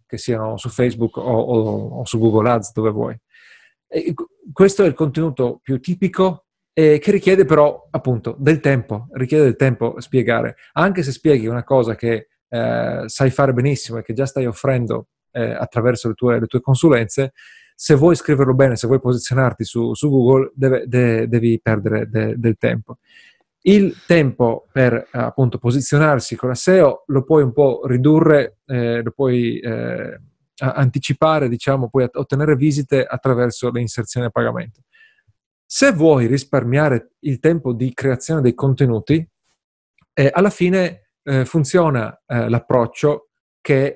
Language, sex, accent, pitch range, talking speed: Italian, male, native, 120-150 Hz, 145 wpm